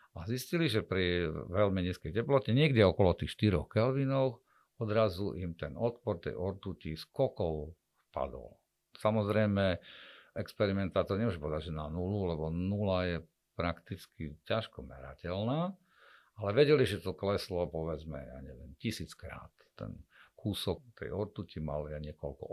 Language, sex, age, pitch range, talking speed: Slovak, male, 50-69, 80-110 Hz, 130 wpm